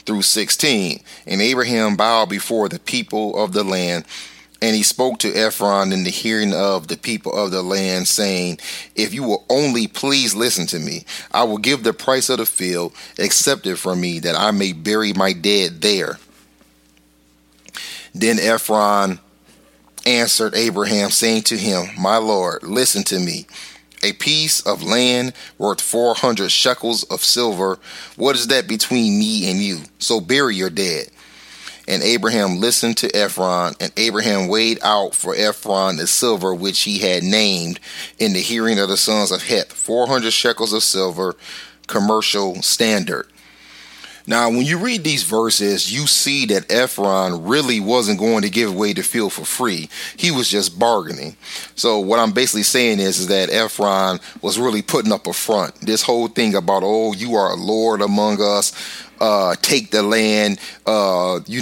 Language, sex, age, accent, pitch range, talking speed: English, male, 30-49, American, 95-115 Hz, 165 wpm